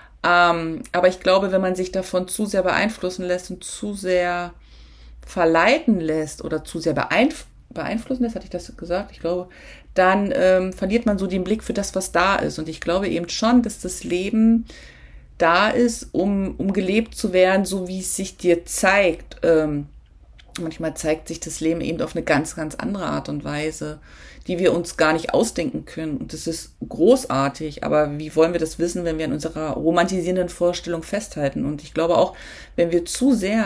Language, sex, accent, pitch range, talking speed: German, female, German, 160-200 Hz, 190 wpm